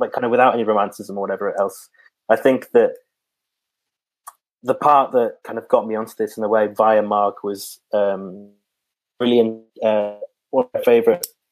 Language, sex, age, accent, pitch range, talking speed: English, male, 20-39, British, 100-115 Hz, 175 wpm